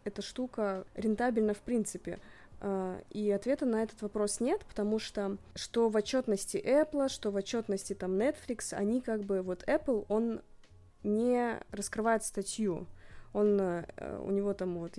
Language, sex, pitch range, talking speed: Russian, female, 195-235 Hz, 145 wpm